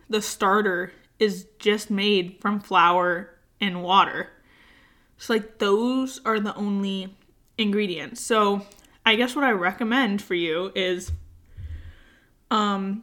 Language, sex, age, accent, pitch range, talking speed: English, female, 10-29, American, 190-225 Hz, 120 wpm